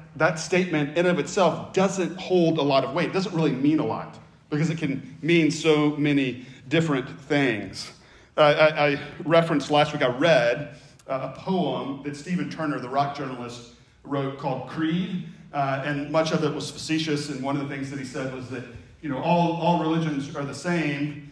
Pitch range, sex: 140-175 Hz, male